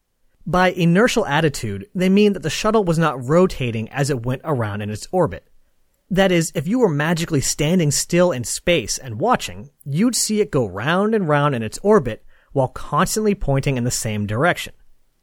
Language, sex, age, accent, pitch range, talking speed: English, male, 40-59, American, 125-175 Hz, 185 wpm